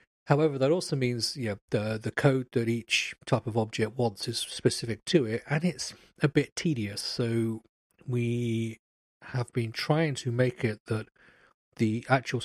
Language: English